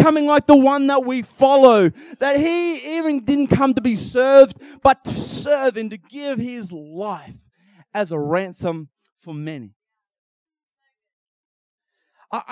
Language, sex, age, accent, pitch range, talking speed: English, male, 30-49, Australian, 170-245 Hz, 140 wpm